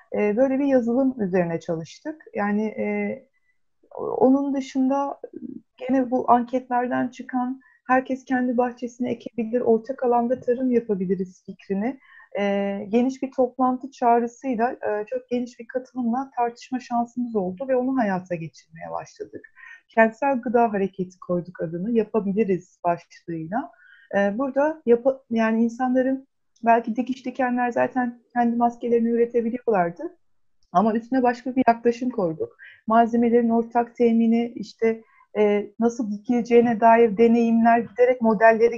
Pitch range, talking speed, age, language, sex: 225-265 Hz, 115 wpm, 30-49, Turkish, female